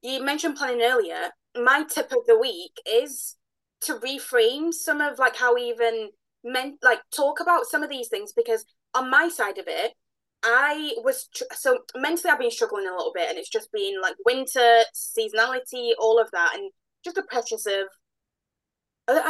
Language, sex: English, female